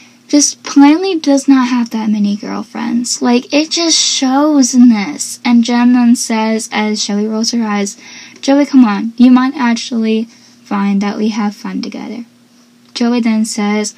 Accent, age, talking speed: American, 10-29, 165 wpm